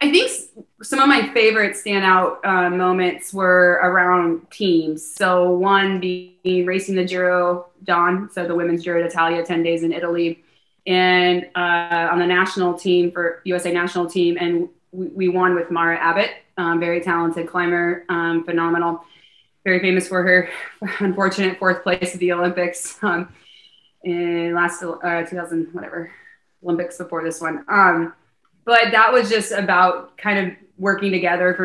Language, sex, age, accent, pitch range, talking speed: English, female, 20-39, American, 170-185 Hz, 155 wpm